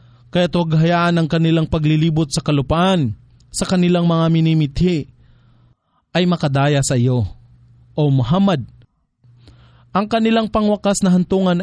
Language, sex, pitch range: English, male, 120-170 Hz